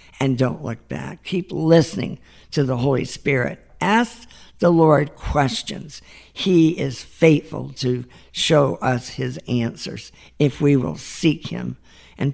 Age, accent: 60-79, American